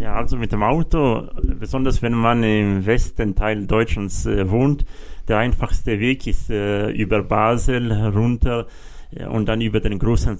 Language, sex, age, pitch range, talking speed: German, male, 30-49, 100-115 Hz, 160 wpm